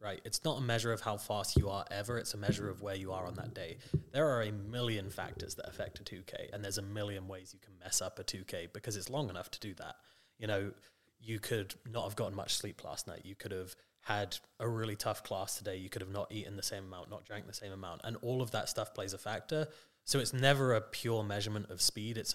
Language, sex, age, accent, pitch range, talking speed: English, male, 20-39, British, 95-115 Hz, 270 wpm